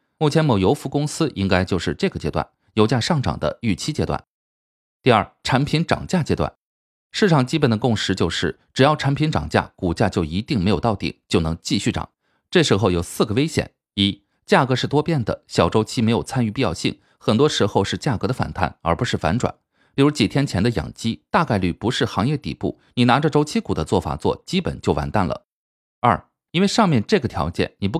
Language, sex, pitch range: Chinese, male, 95-150 Hz